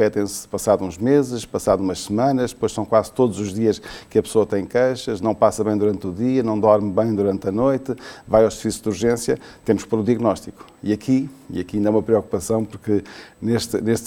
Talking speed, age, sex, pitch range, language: 220 wpm, 50-69, male, 105-130 Hz, Portuguese